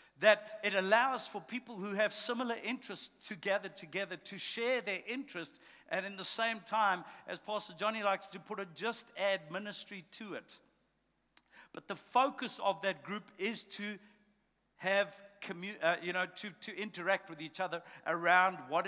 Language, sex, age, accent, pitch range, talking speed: English, male, 60-79, South African, 180-210 Hz, 170 wpm